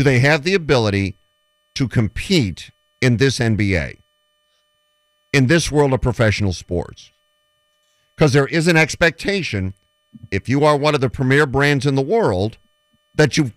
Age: 50-69